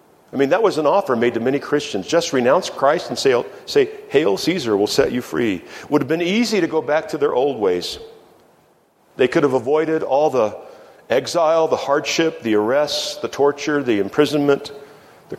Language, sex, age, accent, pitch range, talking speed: English, male, 50-69, American, 135-165 Hz, 190 wpm